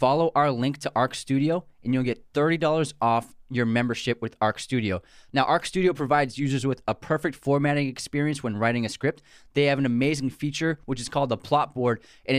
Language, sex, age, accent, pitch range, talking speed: English, male, 20-39, American, 120-150 Hz, 205 wpm